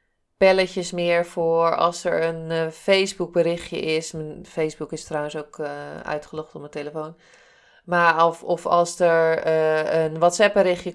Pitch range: 165-200 Hz